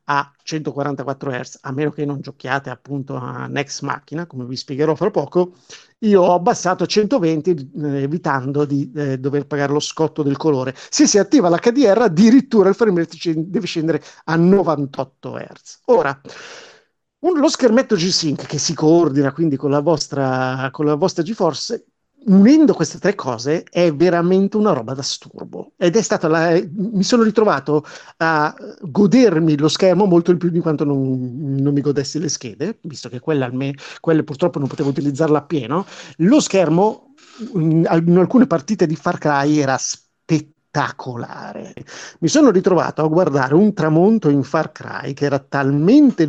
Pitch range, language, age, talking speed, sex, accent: 145-190 Hz, Italian, 50-69, 160 wpm, male, native